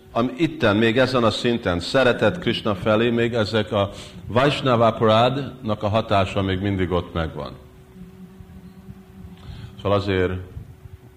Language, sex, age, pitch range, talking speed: Hungarian, male, 50-69, 85-115 Hz, 105 wpm